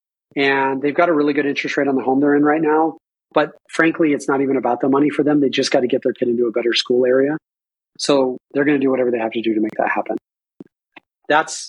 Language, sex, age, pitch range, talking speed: English, male, 30-49, 130-155 Hz, 265 wpm